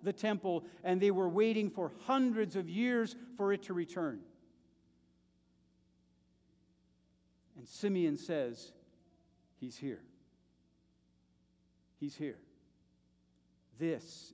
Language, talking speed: English, 90 wpm